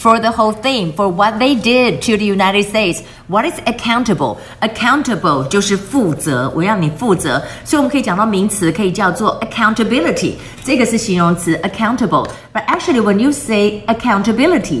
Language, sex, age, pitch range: Chinese, female, 50-69, 180-230 Hz